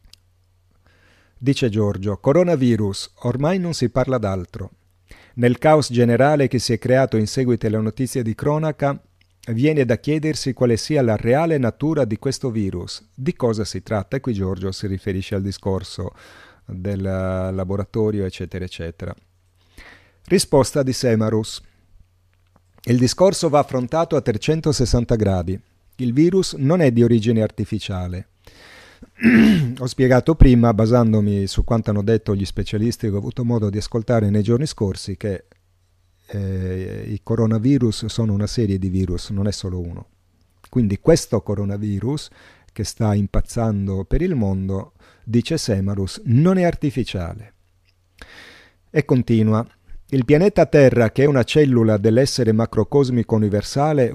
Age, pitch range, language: 40-59, 95-130 Hz, Italian